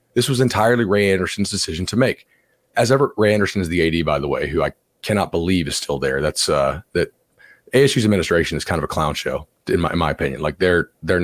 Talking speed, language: 235 wpm, English